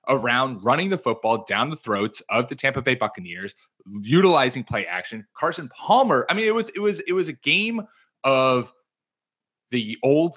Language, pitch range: English, 125-180 Hz